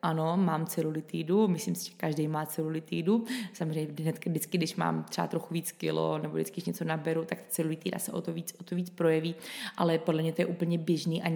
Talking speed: 210 wpm